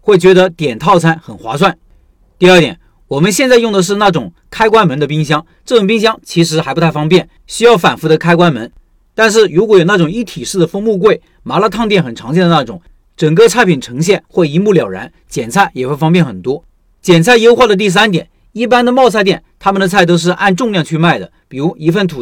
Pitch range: 155-210 Hz